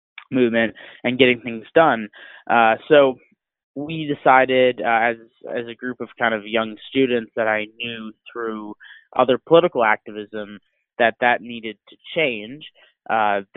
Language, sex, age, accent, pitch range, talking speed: English, male, 20-39, American, 105-125 Hz, 140 wpm